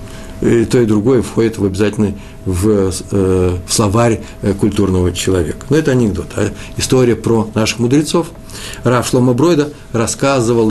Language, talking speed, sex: Russian, 135 wpm, male